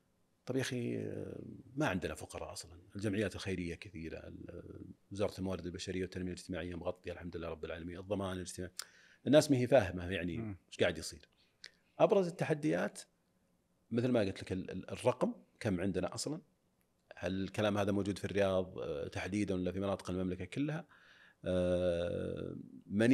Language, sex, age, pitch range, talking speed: Arabic, male, 40-59, 90-115 Hz, 135 wpm